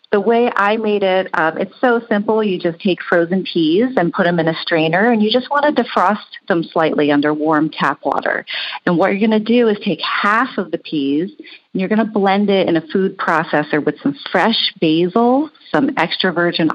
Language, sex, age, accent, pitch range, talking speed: English, female, 40-59, American, 170-235 Hz, 220 wpm